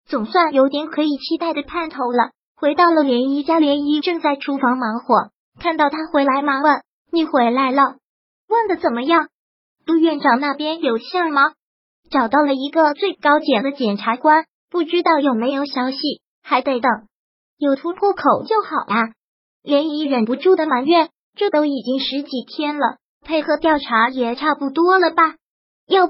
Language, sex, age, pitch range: Chinese, male, 20-39, 265-325 Hz